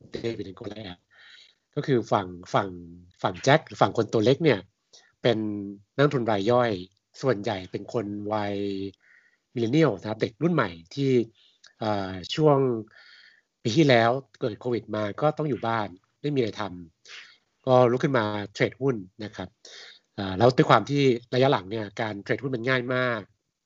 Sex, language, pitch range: male, Thai, 105-135 Hz